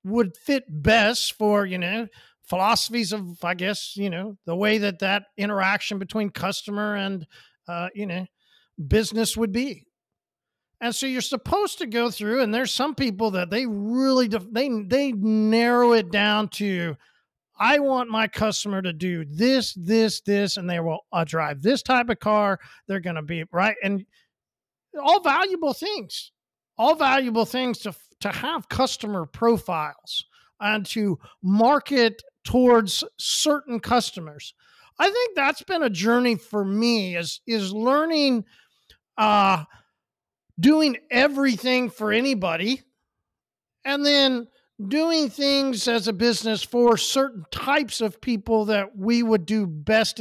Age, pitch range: 50-69, 200-255 Hz